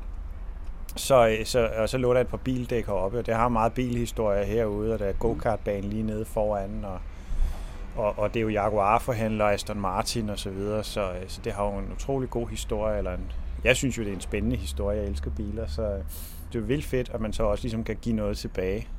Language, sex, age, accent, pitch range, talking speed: Danish, male, 30-49, native, 95-120 Hz, 230 wpm